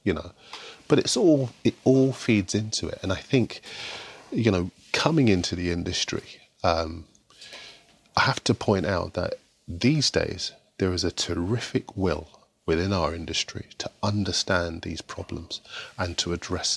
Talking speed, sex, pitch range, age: 155 wpm, male, 85-105 Hz, 40-59